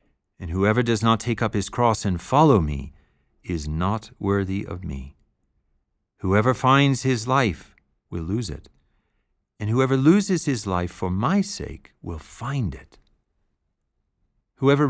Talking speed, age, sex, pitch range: 140 wpm, 50-69, male, 85-130 Hz